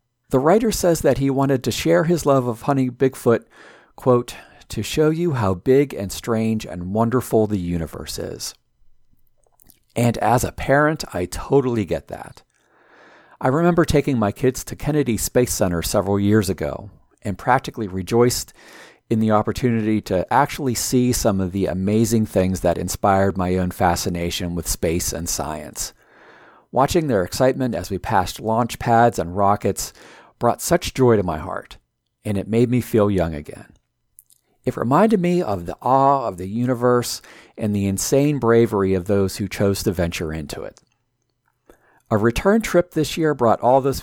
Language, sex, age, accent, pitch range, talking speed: English, male, 40-59, American, 95-135 Hz, 165 wpm